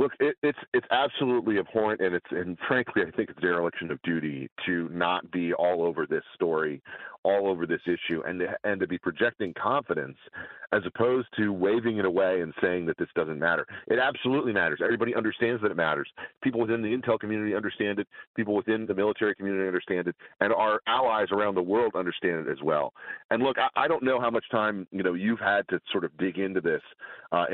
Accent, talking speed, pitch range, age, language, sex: American, 210 wpm, 90-125 Hz, 40-59, English, male